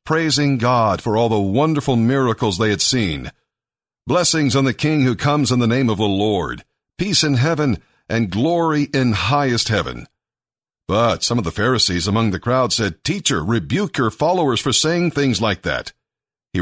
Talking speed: 175 wpm